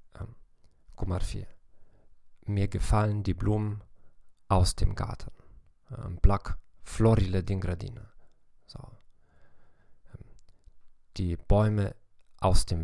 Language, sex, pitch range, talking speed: English, male, 90-105 Hz, 65 wpm